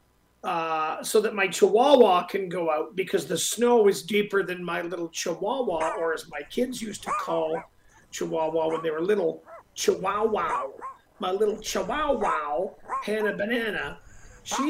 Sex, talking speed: male, 145 wpm